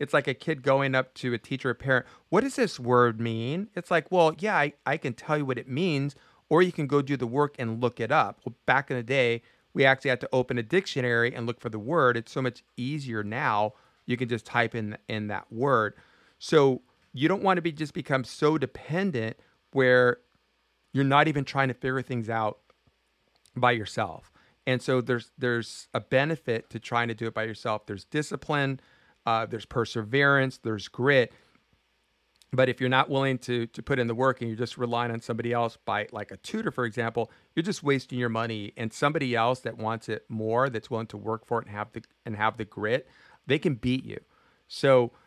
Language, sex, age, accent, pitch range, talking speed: English, male, 40-59, American, 115-140 Hz, 220 wpm